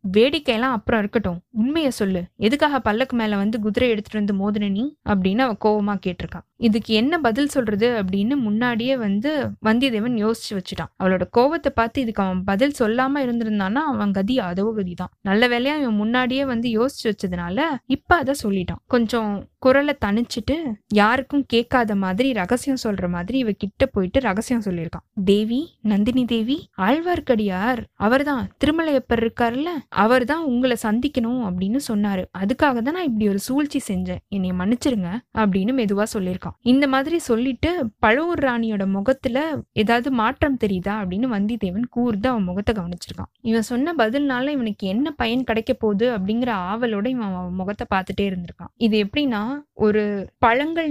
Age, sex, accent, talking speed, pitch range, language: 20-39, female, native, 140 wpm, 205-260 Hz, Tamil